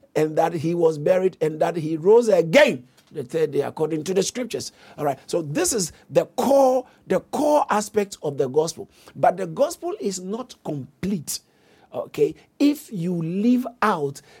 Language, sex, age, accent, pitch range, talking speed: English, male, 50-69, Nigerian, 160-235 Hz, 170 wpm